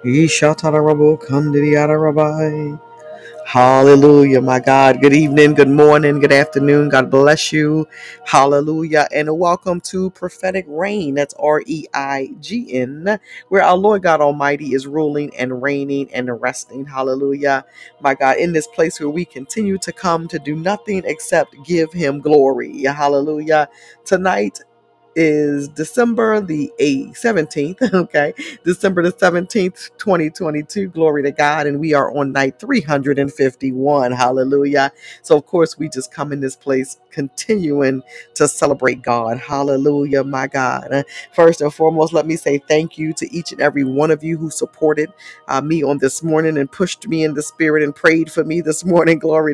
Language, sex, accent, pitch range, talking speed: English, female, American, 140-160 Hz, 145 wpm